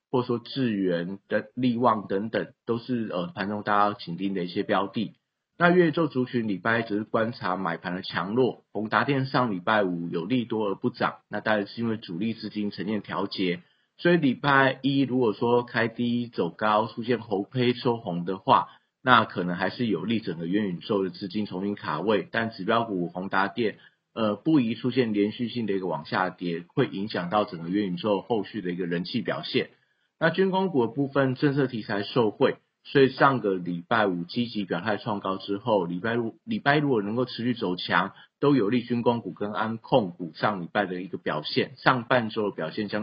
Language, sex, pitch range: Chinese, male, 100-125 Hz